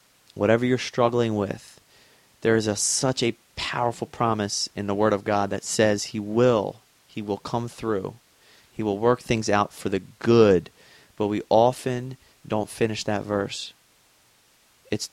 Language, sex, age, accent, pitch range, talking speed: English, male, 30-49, American, 105-125 Hz, 155 wpm